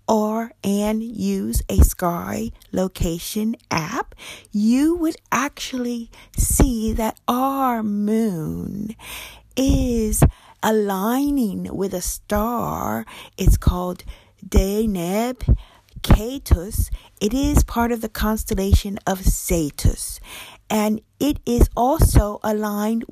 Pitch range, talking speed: 165-230 Hz, 95 wpm